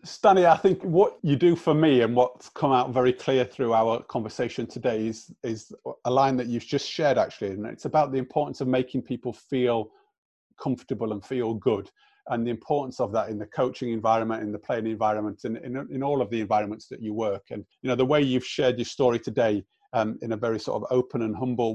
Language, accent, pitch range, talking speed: English, British, 110-140 Hz, 225 wpm